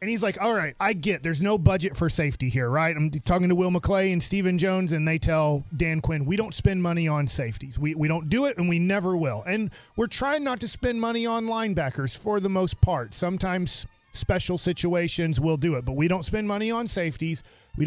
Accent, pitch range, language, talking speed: American, 155-200 Hz, English, 230 wpm